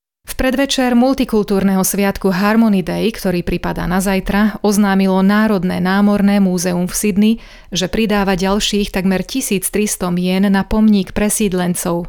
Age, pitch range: 30-49, 185-205 Hz